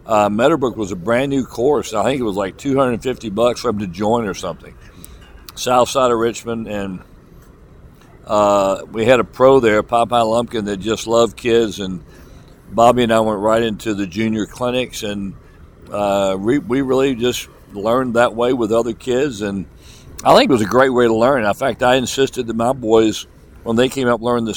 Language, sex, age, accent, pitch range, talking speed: English, male, 60-79, American, 105-125 Hz, 200 wpm